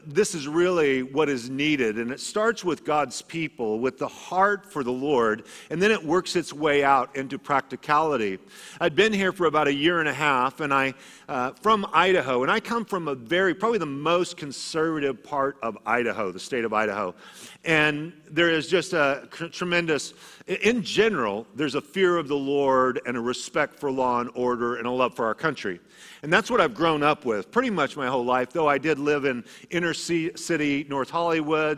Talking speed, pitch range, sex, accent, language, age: 200 wpm, 135-175 Hz, male, American, English, 50-69